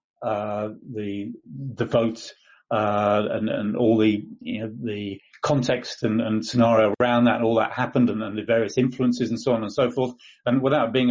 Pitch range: 110-125 Hz